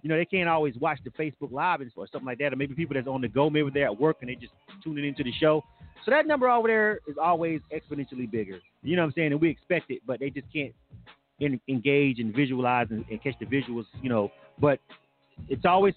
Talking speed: 245 wpm